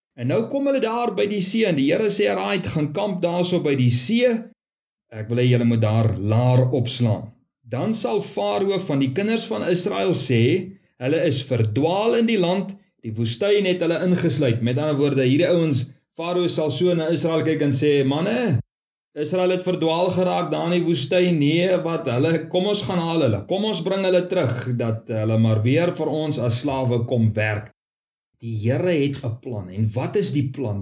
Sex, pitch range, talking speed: male, 120-185 Hz, 195 wpm